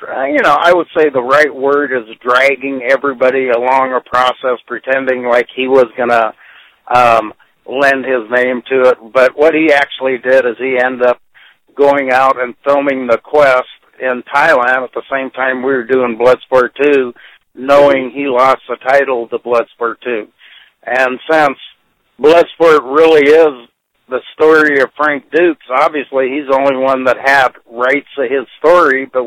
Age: 60-79